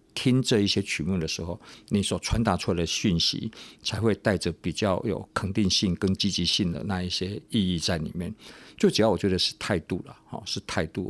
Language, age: Chinese, 50-69